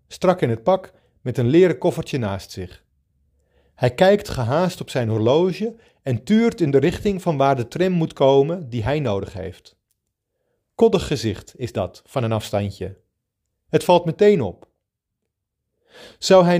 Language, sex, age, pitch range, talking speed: Dutch, male, 40-59, 105-165 Hz, 160 wpm